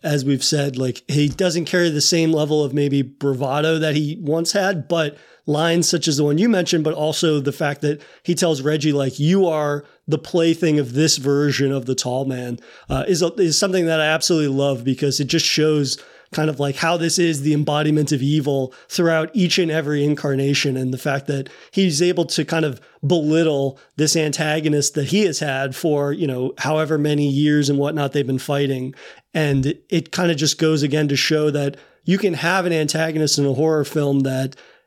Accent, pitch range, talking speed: American, 140-165 Hz, 205 wpm